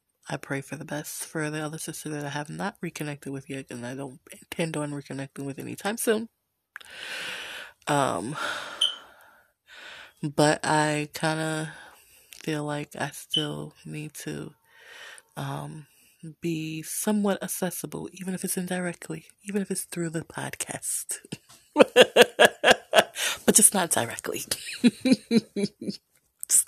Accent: American